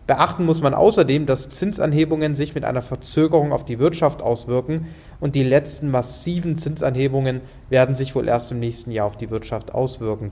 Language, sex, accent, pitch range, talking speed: English, male, German, 120-145 Hz, 175 wpm